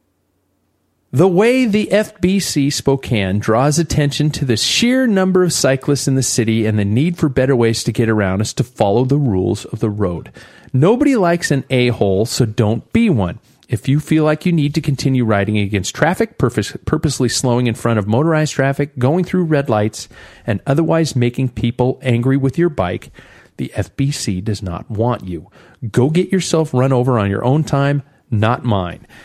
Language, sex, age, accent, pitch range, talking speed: English, male, 40-59, American, 105-145 Hz, 180 wpm